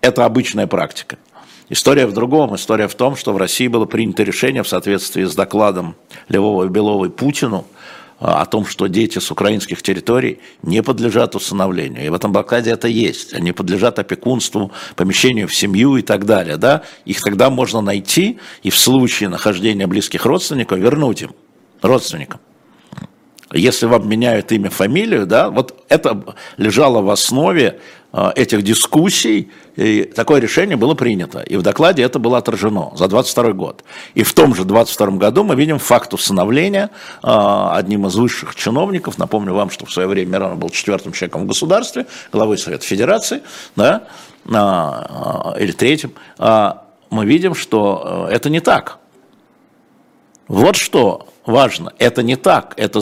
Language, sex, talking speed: Russian, male, 150 wpm